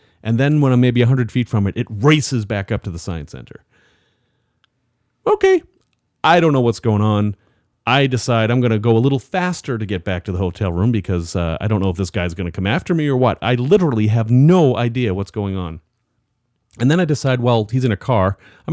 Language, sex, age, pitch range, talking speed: English, male, 40-59, 105-150 Hz, 235 wpm